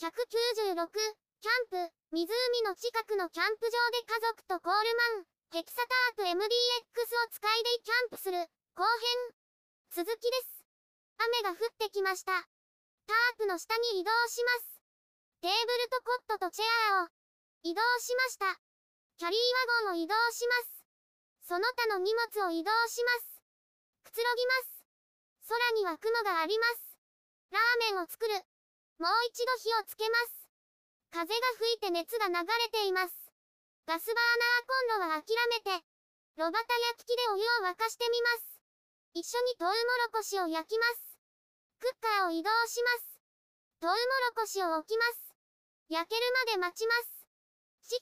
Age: 20-39